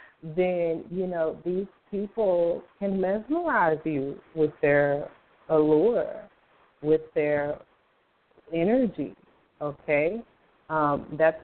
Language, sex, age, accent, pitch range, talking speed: English, female, 40-59, American, 150-185 Hz, 90 wpm